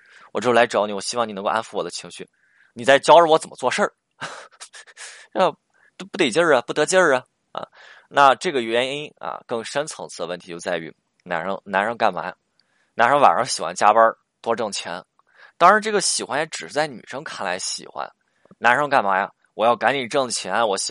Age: 20-39